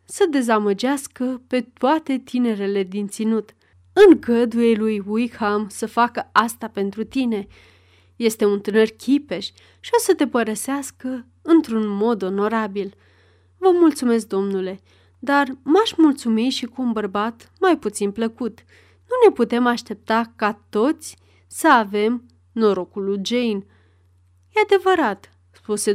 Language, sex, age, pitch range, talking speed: Romanian, female, 30-49, 205-260 Hz, 125 wpm